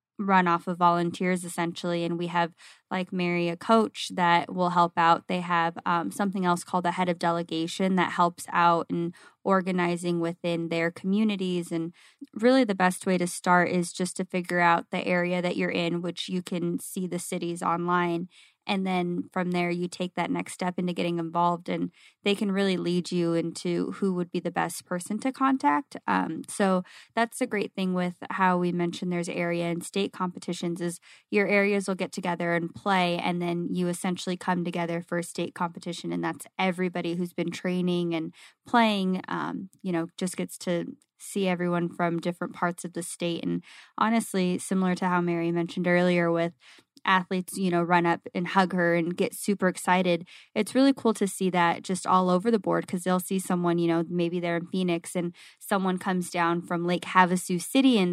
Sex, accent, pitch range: female, American, 170-185 Hz